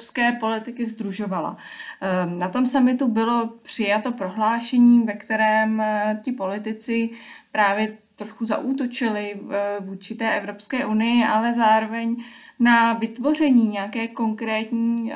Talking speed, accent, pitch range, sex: 100 wpm, native, 210-235 Hz, female